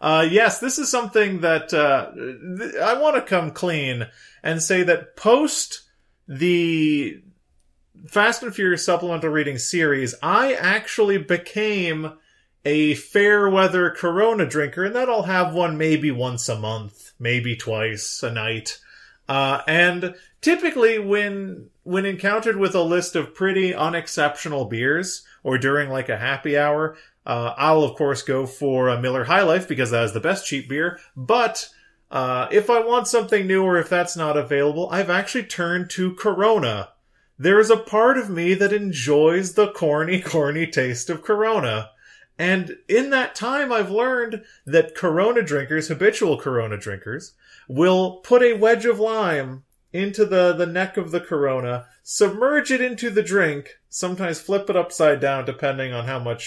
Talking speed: 160 wpm